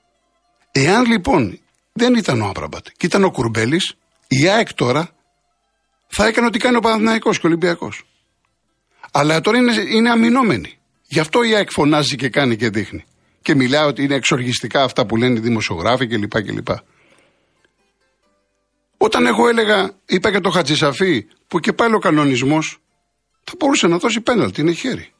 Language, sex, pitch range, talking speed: Greek, male, 140-210 Hz, 160 wpm